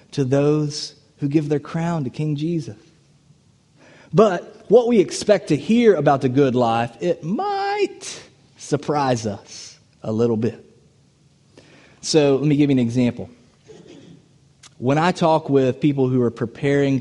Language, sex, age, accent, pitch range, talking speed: English, male, 20-39, American, 120-155 Hz, 145 wpm